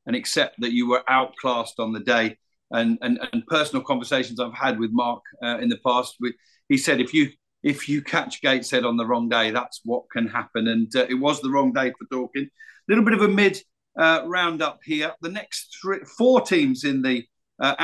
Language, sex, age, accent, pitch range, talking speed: English, male, 50-69, British, 125-180 Hz, 215 wpm